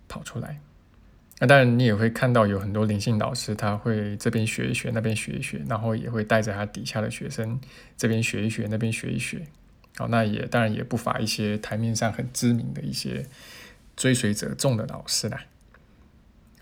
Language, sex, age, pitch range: Chinese, male, 20-39, 105-120 Hz